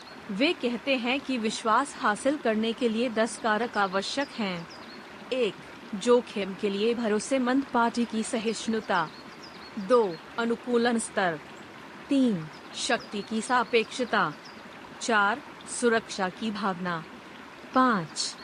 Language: Hindi